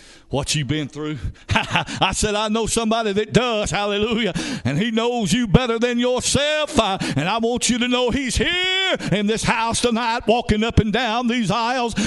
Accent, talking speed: American, 190 wpm